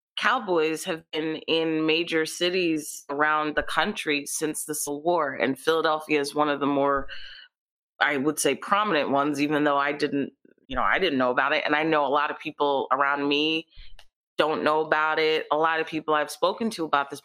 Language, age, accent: English, 20-39, American